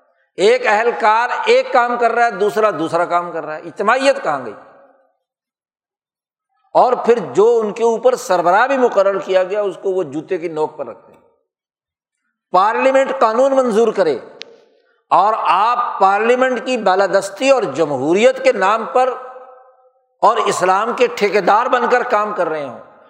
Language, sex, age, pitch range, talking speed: Urdu, male, 60-79, 180-255 Hz, 155 wpm